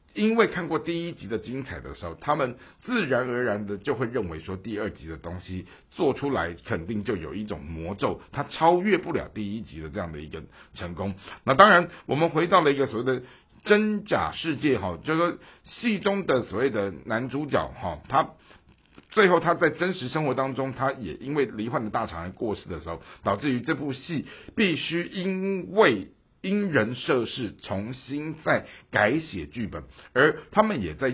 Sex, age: male, 60-79